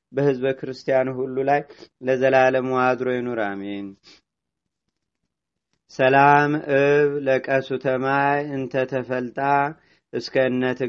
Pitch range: 130-140 Hz